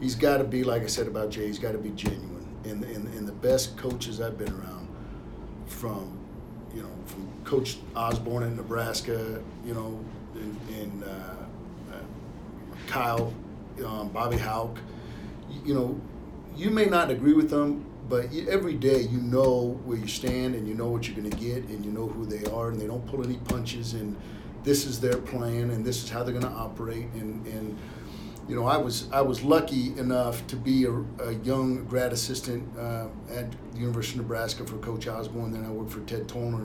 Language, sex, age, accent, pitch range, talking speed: English, male, 50-69, American, 110-125 Hz, 200 wpm